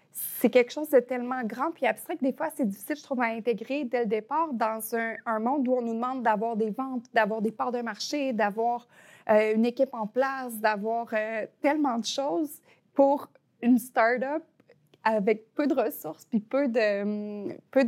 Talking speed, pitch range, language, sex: 195 wpm, 220-260 Hz, French, female